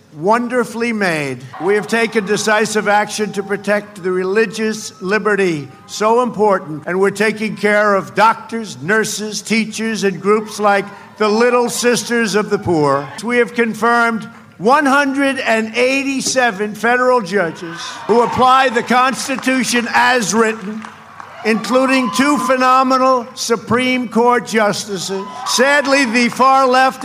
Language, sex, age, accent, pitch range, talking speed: English, male, 50-69, American, 205-240 Hz, 120 wpm